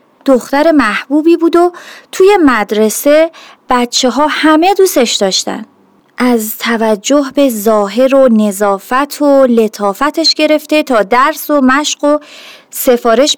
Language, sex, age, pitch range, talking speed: Persian, female, 30-49, 240-310 Hz, 115 wpm